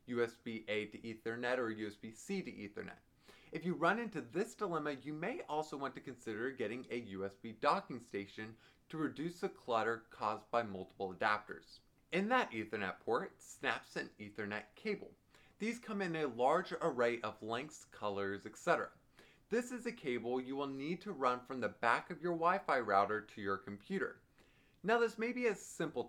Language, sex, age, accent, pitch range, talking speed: English, male, 20-39, American, 115-175 Hz, 170 wpm